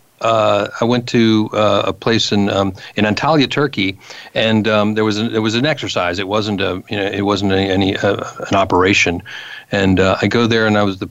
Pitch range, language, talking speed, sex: 100-120 Hz, English, 220 wpm, male